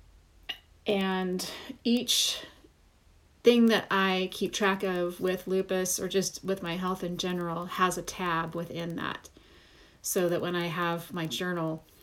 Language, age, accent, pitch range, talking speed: English, 30-49, American, 165-185 Hz, 145 wpm